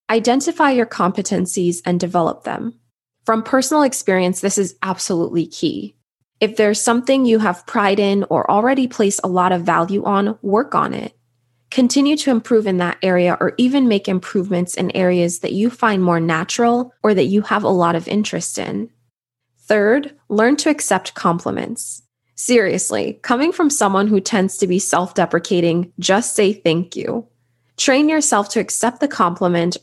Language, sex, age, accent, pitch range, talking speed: English, female, 20-39, American, 180-235 Hz, 165 wpm